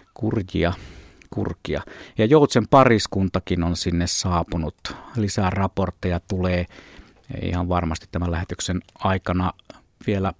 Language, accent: Finnish, native